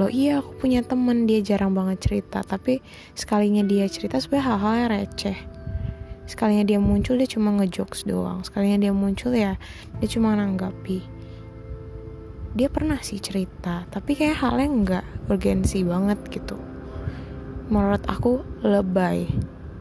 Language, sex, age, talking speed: English, female, 20-39, 135 wpm